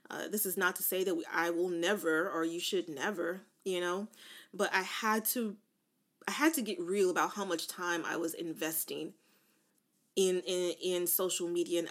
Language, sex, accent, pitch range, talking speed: English, female, American, 175-225 Hz, 195 wpm